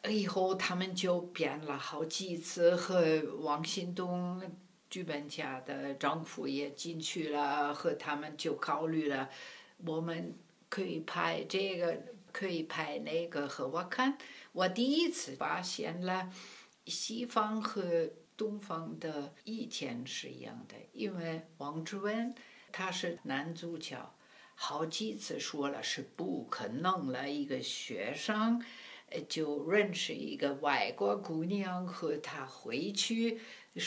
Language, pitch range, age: Chinese, 160-215 Hz, 60-79